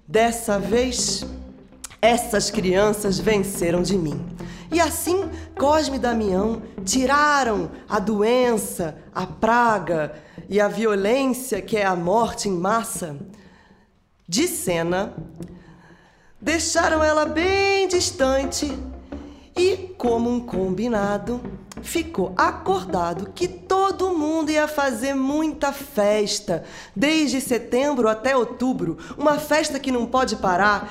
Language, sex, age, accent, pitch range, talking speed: Portuguese, female, 20-39, Brazilian, 185-275 Hz, 105 wpm